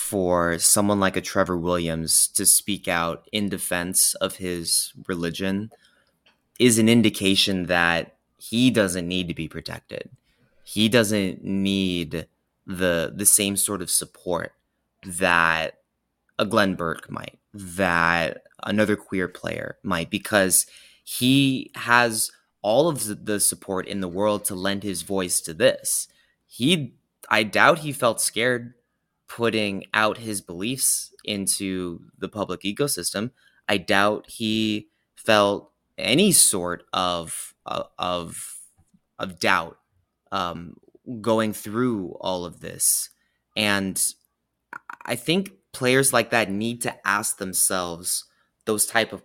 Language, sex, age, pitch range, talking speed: English, male, 20-39, 90-110 Hz, 125 wpm